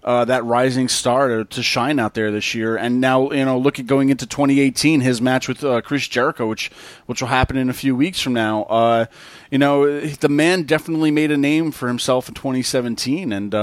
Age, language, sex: 30-49, English, male